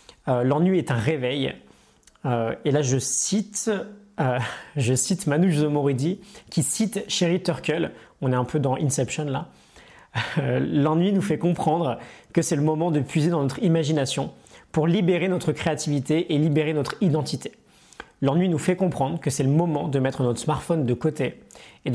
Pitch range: 130-160 Hz